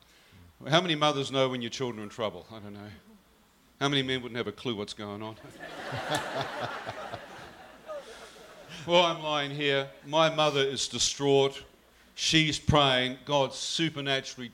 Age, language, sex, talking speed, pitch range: 50-69, English, male, 145 wpm, 115-145 Hz